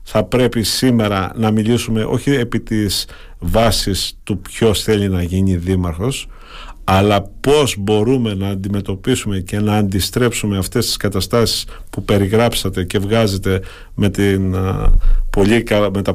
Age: 50-69